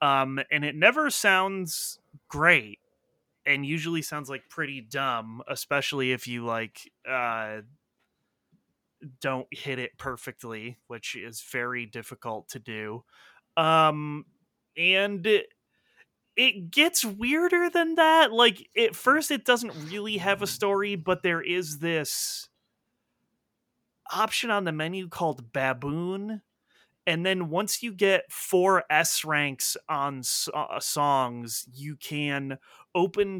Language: English